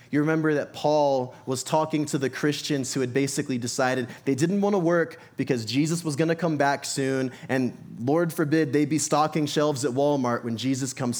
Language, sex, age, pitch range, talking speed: English, male, 20-39, 120-150 Hz, 205 wpm